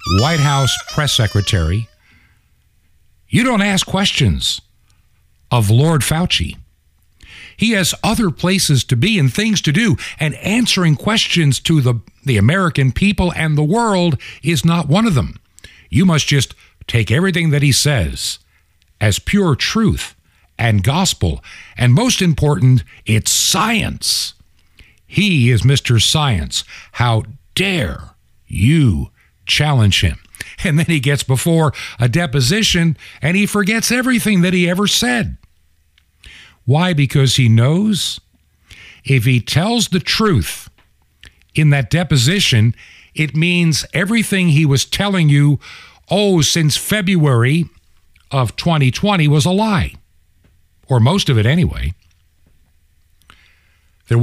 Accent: American